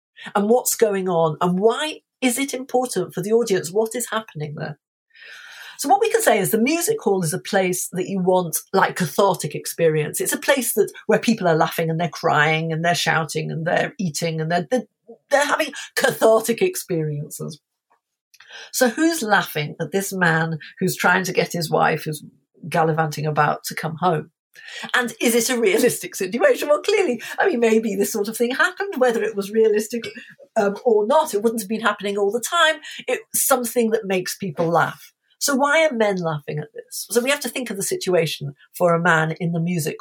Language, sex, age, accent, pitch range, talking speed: English, female, 50-69, British, 170-240 Hz, 200 wpm